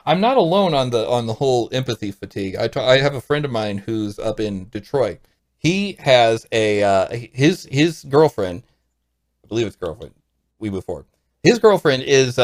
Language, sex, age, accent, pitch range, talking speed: English, male, 40-59, American, 100-140 Hz, 185 wpm